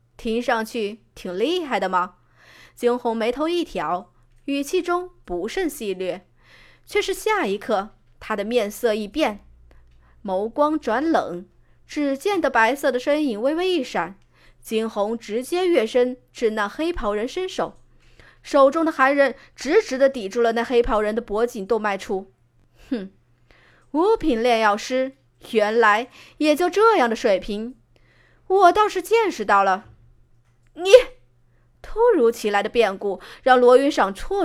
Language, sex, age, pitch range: Chinese, female, 20-39, 195-300 Hz